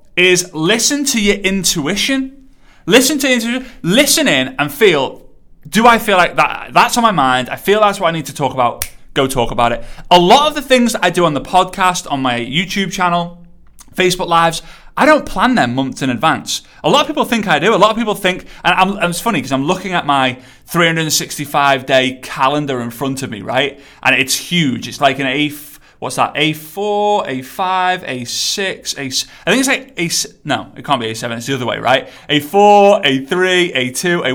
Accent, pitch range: British, 135-205 Hz